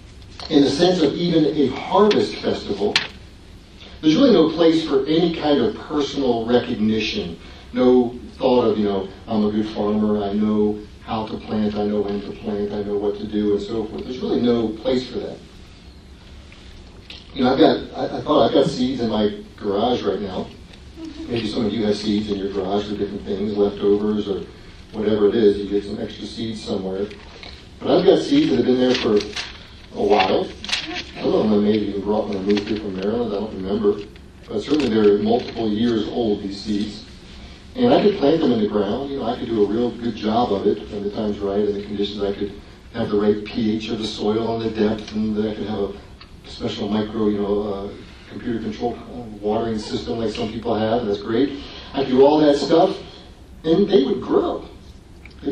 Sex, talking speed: male, 200 wpm